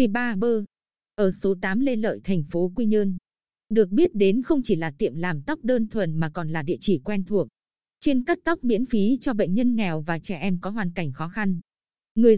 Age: 20-39